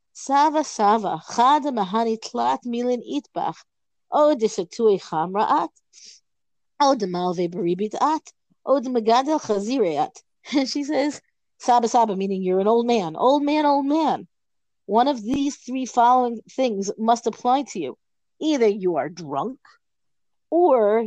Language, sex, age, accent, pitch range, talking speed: English, female, 40-59, American, 195-270 Hz, 85 wpm